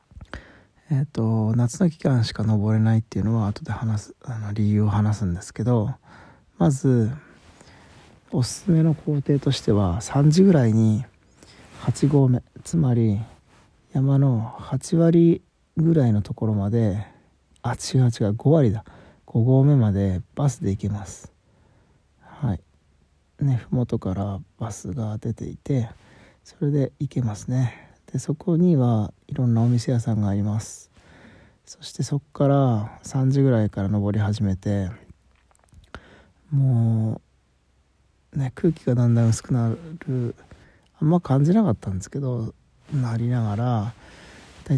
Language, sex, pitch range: Japanese, male, 105-135 Hz